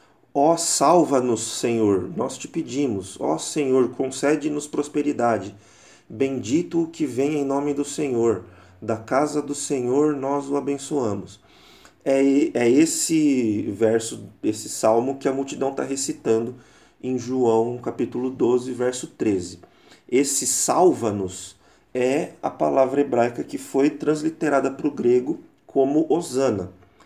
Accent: Brazilian